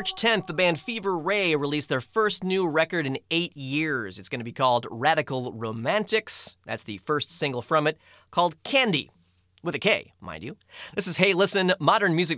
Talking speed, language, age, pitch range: 195 wpm, English, 30-49, 130-200 Hz